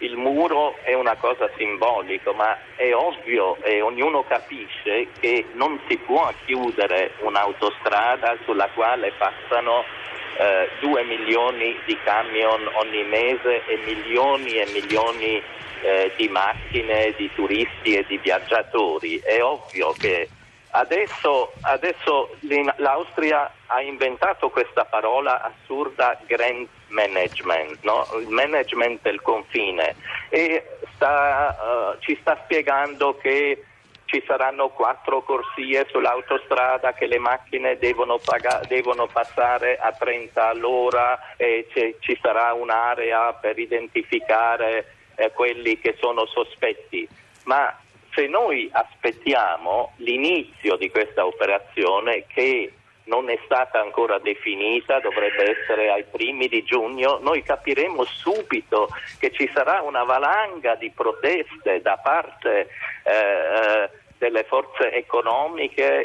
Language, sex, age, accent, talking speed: Italian, male, 50-69, native, 115 wpm